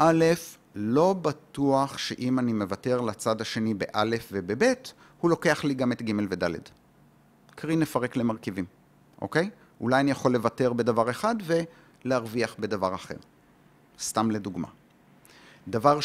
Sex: male